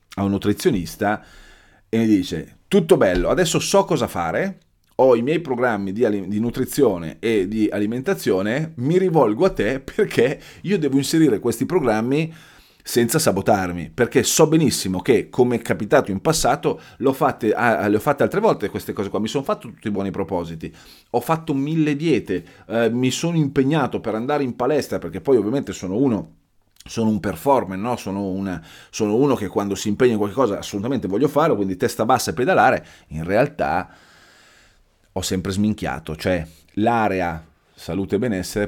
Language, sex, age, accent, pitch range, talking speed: Italian, male, 30-49, native, 90-125 Hz, 165 wpm